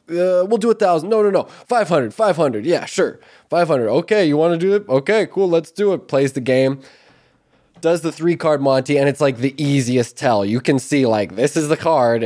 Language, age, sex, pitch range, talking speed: English, 20-39, male, 145-210 Hz, 240 wpm